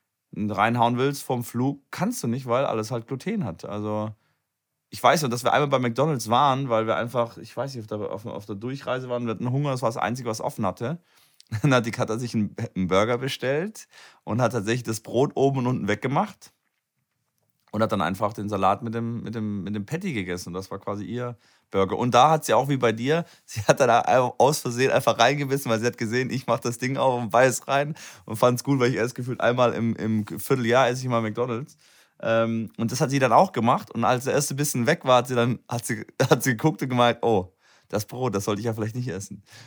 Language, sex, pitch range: German, male, 110-130 Hz